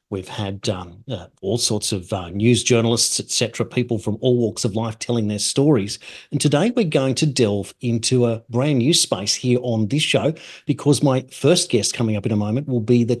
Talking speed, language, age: 220 wpm, English, 40-59